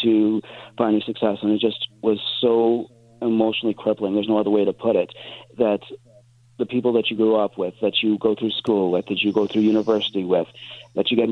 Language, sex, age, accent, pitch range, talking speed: English, male, 40-59, American, 105-120 Hz, 210 wpm